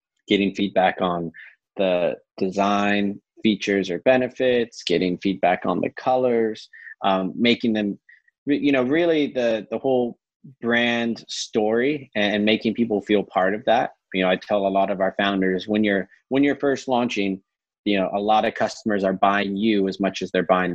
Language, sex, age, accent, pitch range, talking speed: English, male, 30-49, American, 95-115 Hz, 175 wpm